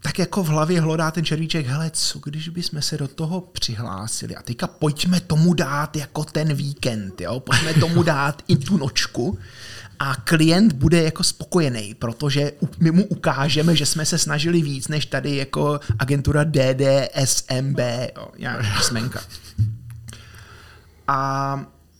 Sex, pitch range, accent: male, 130-165 Hz, native